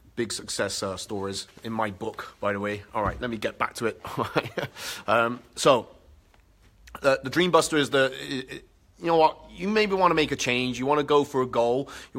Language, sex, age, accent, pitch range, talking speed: English, male, 30-49, British, 110-130 Hz, 225 wpm